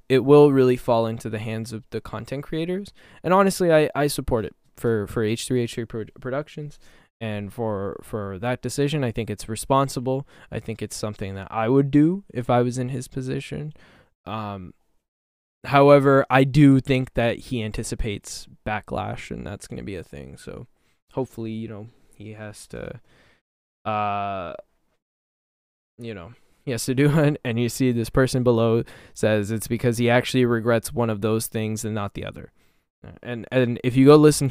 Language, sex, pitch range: English, male, 110-135 Hz